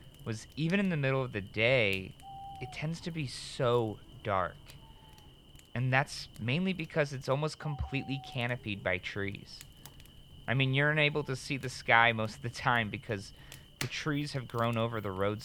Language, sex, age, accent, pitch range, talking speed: English, male, 30-49, American, 105-140 Hz, 170 wpm